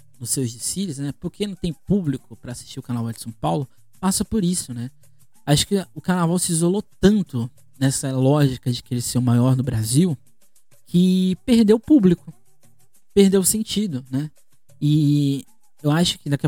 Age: 20-39